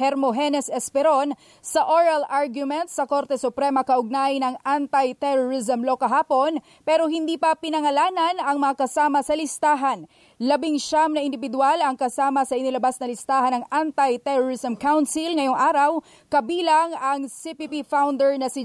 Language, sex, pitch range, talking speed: English, female, 265-305 Hz, 140 wpm